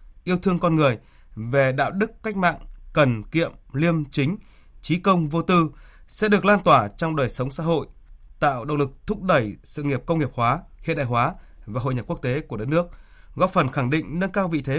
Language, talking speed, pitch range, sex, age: Vietnamese, 225 wpm, 130-175 Hz, male, 20-39